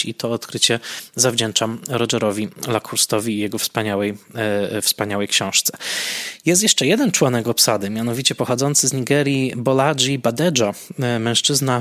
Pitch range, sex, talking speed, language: 115-135 Hz, male, 115 wpm, Polish